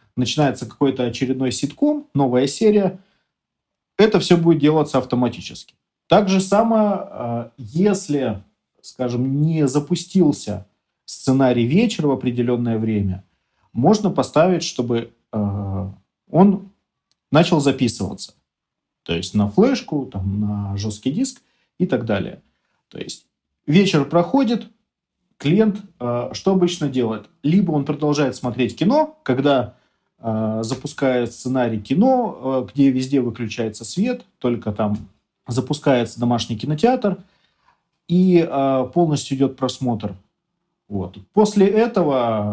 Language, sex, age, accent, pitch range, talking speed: Russian, male, 40-59, native, 115-175 Hz, 100 wpm